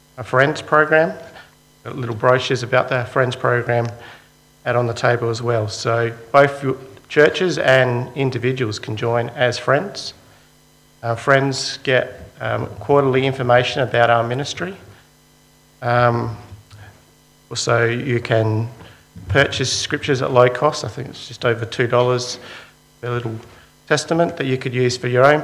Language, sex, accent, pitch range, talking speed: English, male, Australian, 115-140 Hz, 140 wpm